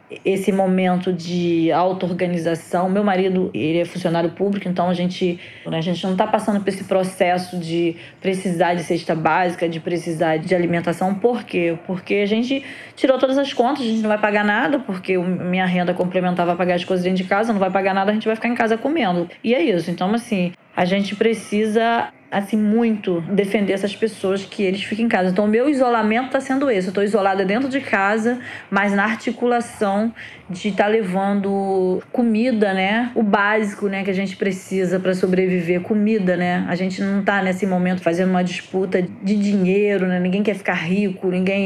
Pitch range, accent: 180-205 Hz, Brazilian